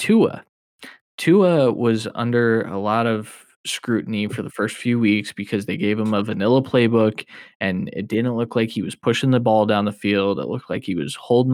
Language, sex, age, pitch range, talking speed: English, male, 20-39, 105-125 Hz, 205 wpm